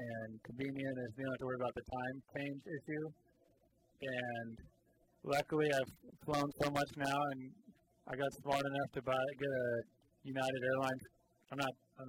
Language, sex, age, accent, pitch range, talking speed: English, male, 30-49, American, 125-140 Hz, 175 wpm